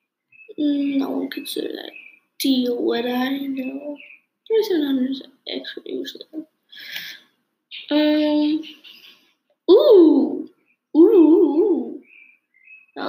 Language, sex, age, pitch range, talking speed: English, female, 10-29, 260-335 Hz, 85 wpm